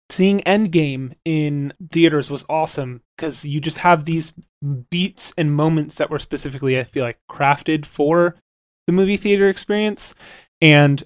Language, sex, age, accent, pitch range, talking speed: English, male, 20-39, American, 135-170 Hz, 145 wpm